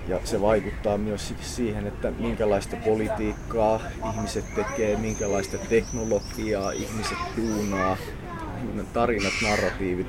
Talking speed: 95 wpm